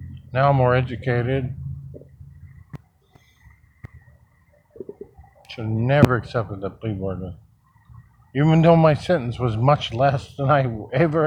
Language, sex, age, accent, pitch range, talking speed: English, male, 50-69, American, 100-130 Hz, 110 wpm